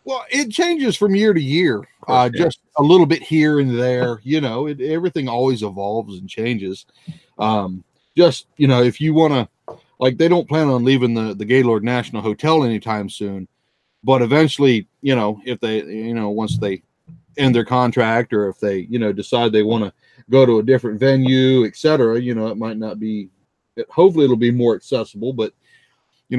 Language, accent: English, American